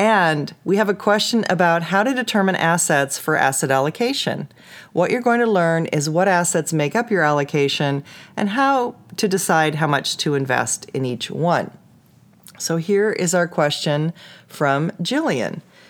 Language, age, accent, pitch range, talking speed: English, 40-59, American, 150-195 Hz, 160 wpm